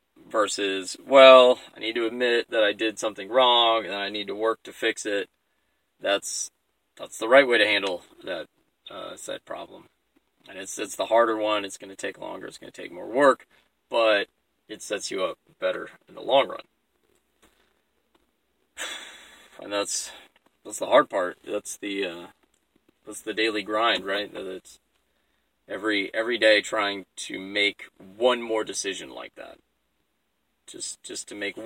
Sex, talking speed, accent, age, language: male, 165 wpm, American, 20-39, English